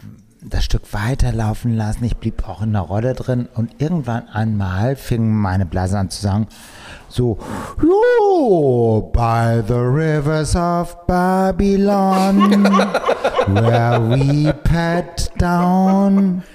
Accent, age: German, 60-79